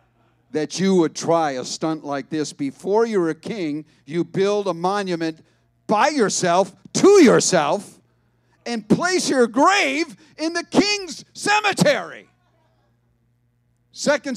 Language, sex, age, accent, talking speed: English, male, 50-69, American, 120 wpm